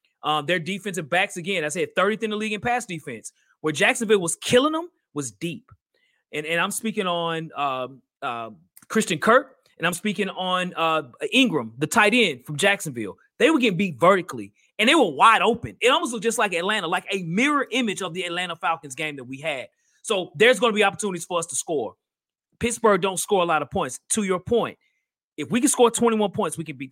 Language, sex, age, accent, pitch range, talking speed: English, male, 30-49, American, 170-250 Hz, 220 wpm